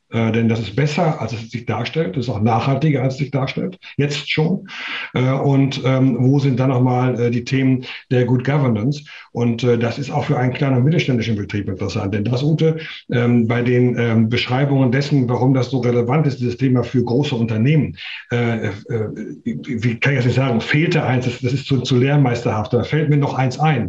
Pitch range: 120-140 Hz